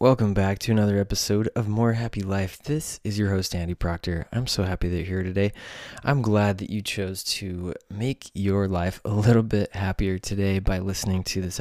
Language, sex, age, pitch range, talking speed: English, male, 20-39, 95-110 Hz, 205 wpm